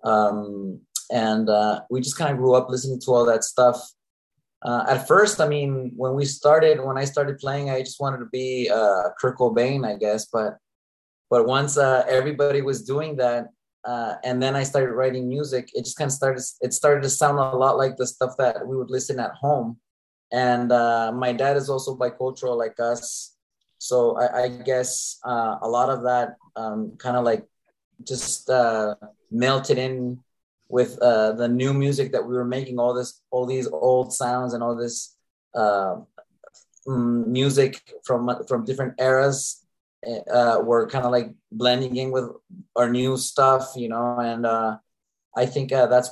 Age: 20-39